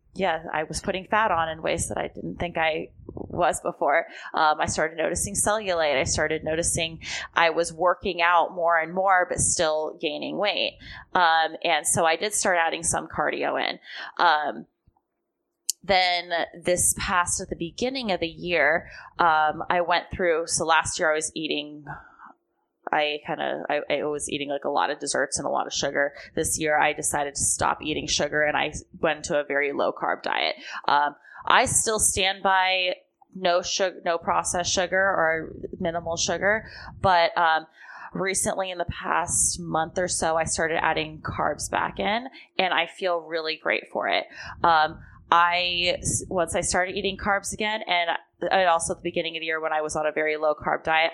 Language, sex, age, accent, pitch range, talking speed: English, female, 20-39, American, 155-185 Hz, 185 wpm